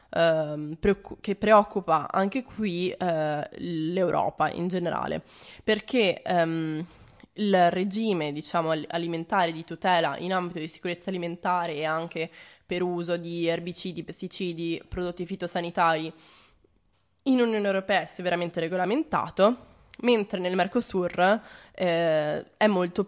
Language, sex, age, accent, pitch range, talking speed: Italian, female, 20-39, native, 165-195 Hz, 110 wpm